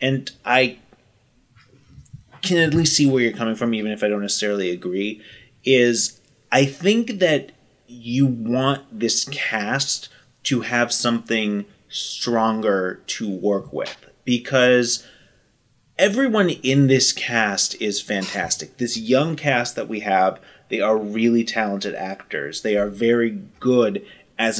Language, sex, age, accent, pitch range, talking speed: English, male, 30-49, American, 105-130 Hz, 130 wpm